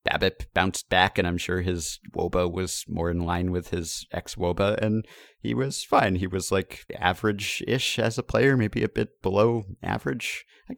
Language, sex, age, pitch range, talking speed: English, male, 30-49, 90-110 Hz, 180 wpm